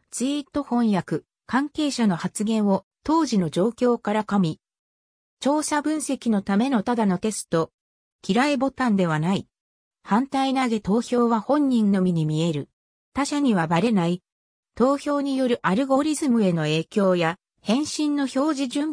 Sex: female